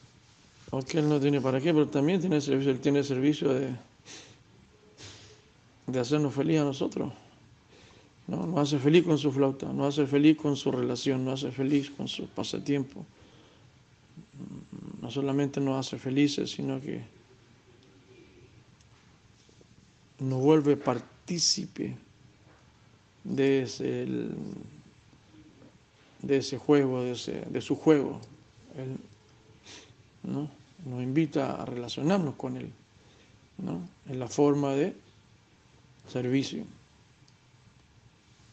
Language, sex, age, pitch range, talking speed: Spanish, male, 50-69, 125-145 Hz, 115 wpm